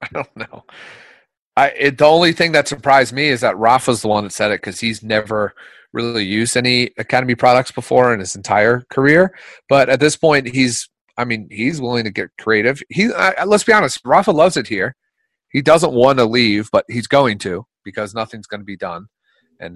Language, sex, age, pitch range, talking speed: English, male, 30-49, 110-135 Hz, 205 wpm